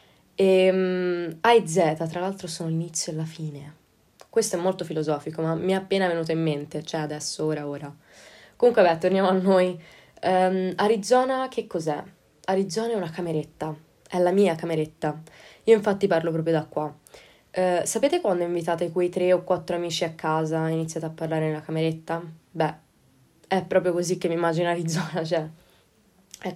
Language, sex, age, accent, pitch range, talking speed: Italian, female, 20-39, native, 160-185 Hz, 165 wpm